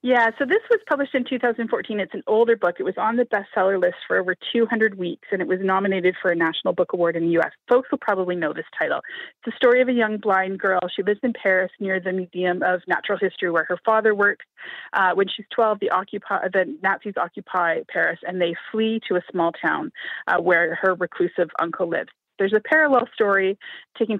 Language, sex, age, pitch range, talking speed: English, female, 30-49, 180-220 Hz, 220 wpm